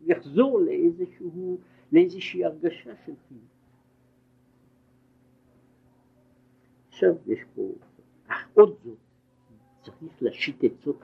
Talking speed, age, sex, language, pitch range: 80 wpm, 60-79, male, Hebrew, 125-135 Hz